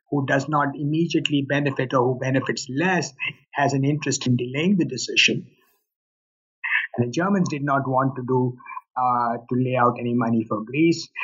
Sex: male